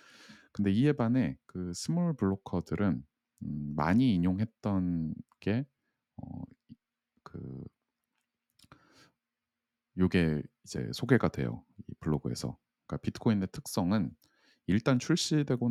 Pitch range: 75-115 Hz